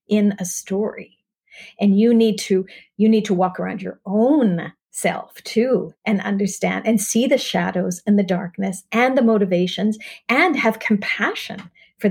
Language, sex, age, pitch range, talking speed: English, female, 50-69, 185-215 Hz, 160 wpm